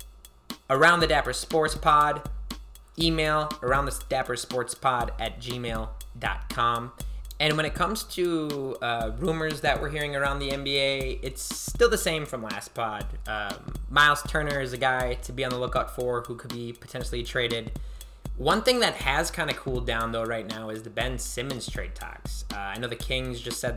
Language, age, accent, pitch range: English, 20-39, American, 115-145 Hz